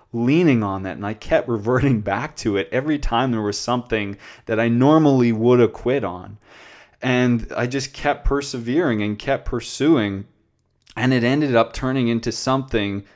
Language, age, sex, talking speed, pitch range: English, 20-39, male, 170 wpm, 110-135 Hz